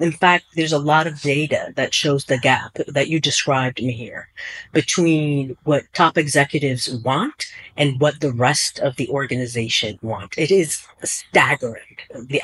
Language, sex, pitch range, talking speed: English, female, 145-190 Hz, 160 wpm